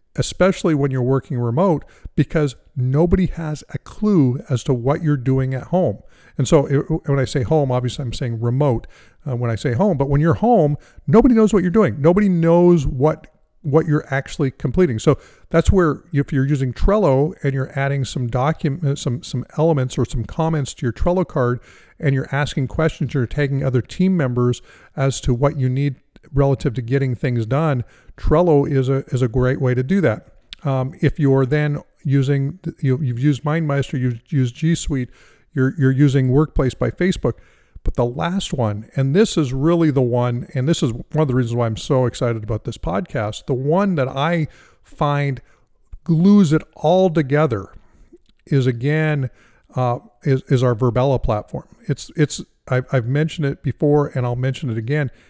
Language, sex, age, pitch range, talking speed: English, male, 50-69, 125-155 Hz, 190 wpm